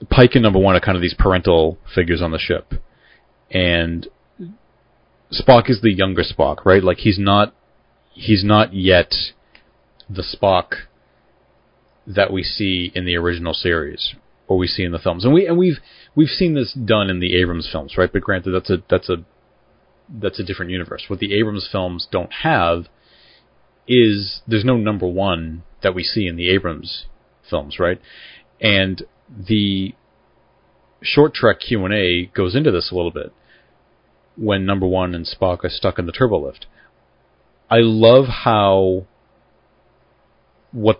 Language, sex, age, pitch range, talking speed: English, male, 30-49, 90-105 Hz, 160 wpm